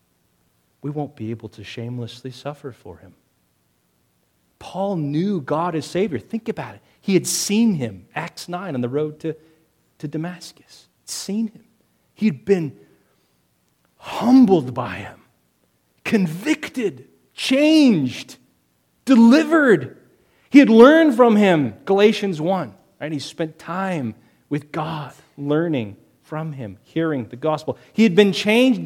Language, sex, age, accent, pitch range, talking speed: English, male, 30-49, American, 135-200 Hz, 130 wpm